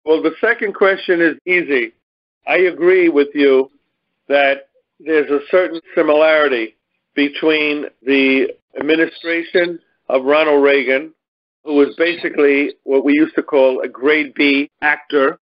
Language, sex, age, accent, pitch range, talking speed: English, male, 50-69, American, 140-165 Hz, 125 wpm